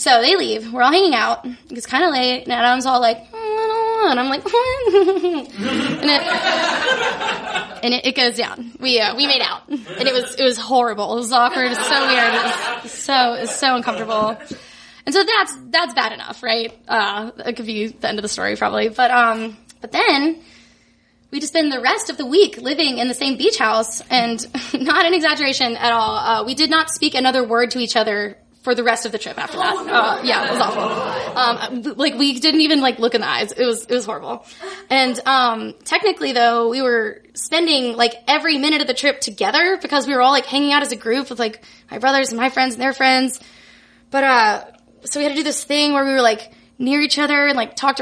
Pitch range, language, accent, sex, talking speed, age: 235-300 Hz, English, American, female, 230 wpm, 10-29